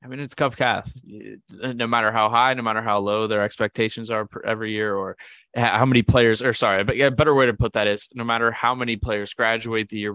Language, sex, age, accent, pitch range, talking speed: English, male, 20-39, American, 100-115 Hz, 245 wpm